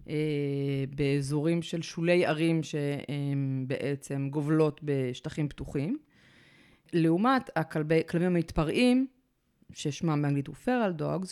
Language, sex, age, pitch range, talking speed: Hebrew, female, 30-49, 150-195 Hz, 90 wpm